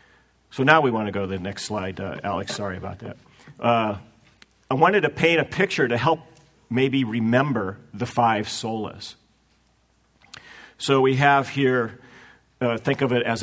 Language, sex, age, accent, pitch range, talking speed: English, male, 50-69, American, 110-135 Hz, 170 wpm